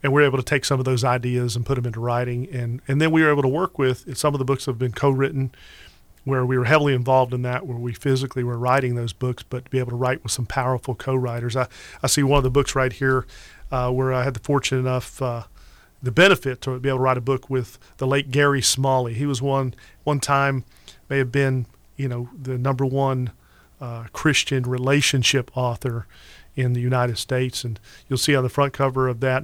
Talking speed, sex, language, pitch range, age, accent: 240 wpm, male, English, 125-140 Hz, 40-59, American